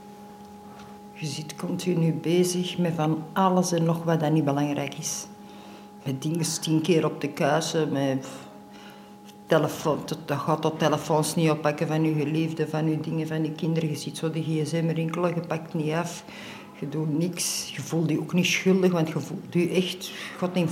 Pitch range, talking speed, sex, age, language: 155-190 Hz, 180 wpm, female, 60-79, Dutch